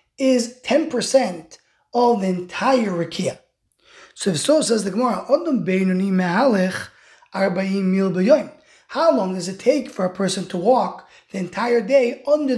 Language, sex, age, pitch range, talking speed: English, male, 20-39, 195-255 Hz, 125 wpm